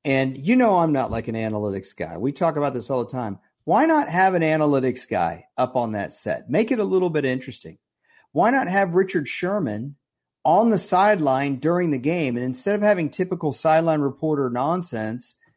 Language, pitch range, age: English, 125-175 Hz, 40-59